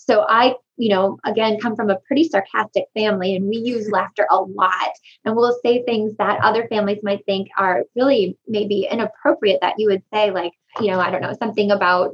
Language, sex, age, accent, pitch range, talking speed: English, female, 20-39, American, 195-225 Hz, 210 wpm